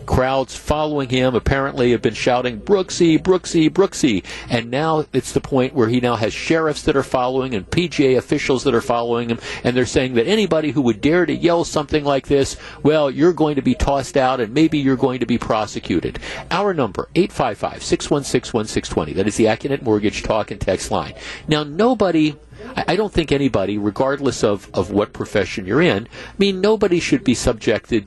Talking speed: 190 wpm